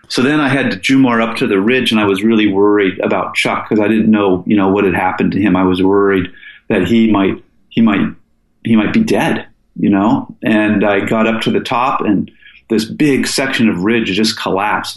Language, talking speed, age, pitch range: English, 235 wpm, 40-59, 100-115 Hz